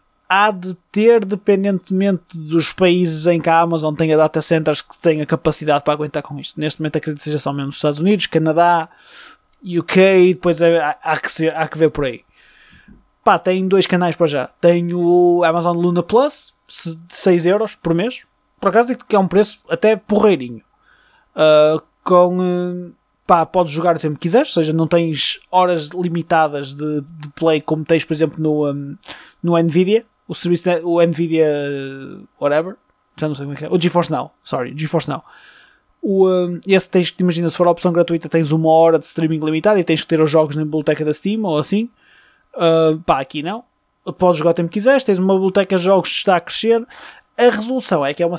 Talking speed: 200 wpm